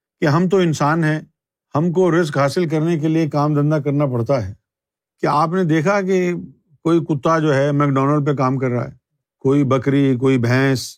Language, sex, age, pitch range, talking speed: Urdu, male, 50-69, 130-165 Hz, 195 wpm